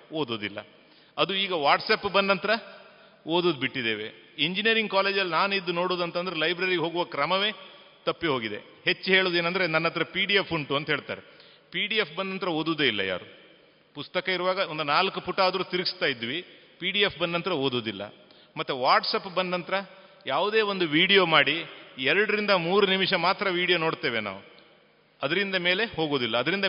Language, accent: Kannada, native